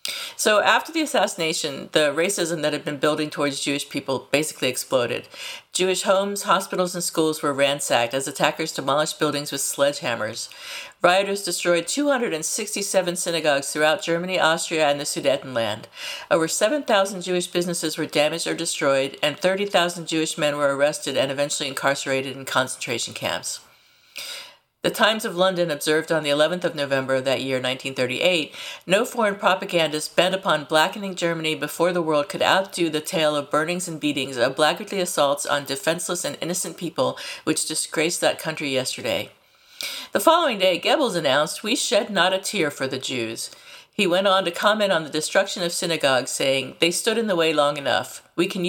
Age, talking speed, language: 50-69, 170 wpm, English